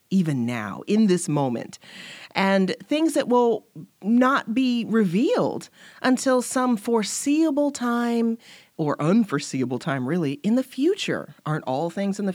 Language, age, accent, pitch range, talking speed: English, 40-59, American, 165-245 Hz, 135 wpm